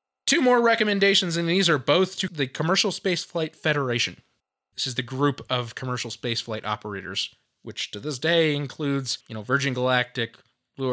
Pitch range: 130-190 Hz